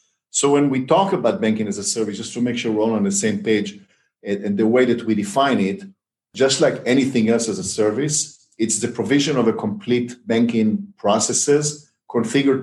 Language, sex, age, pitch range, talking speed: English, male, 50-69, 110-160 Hz, 200 wpm